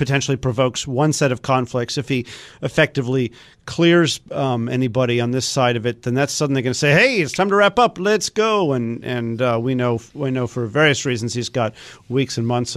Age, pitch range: 50-69, 115-135 Hz